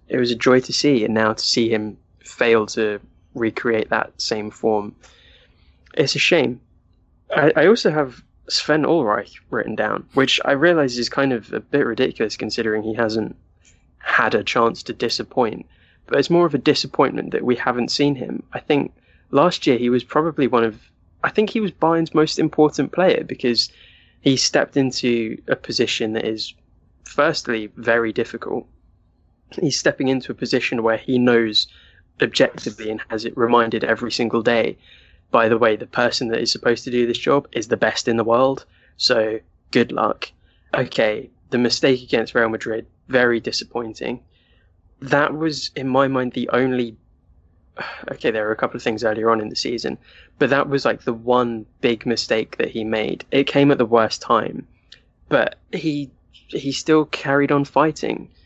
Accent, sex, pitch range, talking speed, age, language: British, male, 110-135 Hz, 175 wpm, 10-29, English